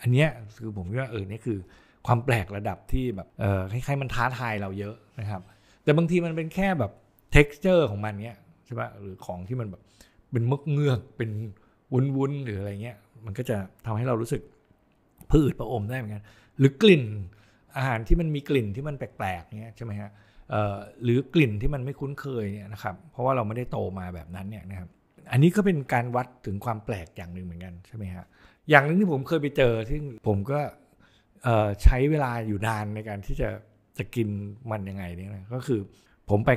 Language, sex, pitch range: Thai, male, 100-130 Hz